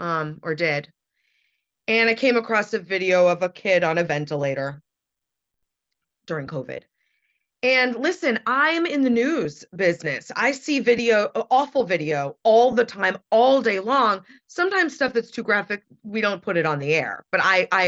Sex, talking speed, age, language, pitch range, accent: female, 170 wpm, 30-49, English, 160-230 Hz, American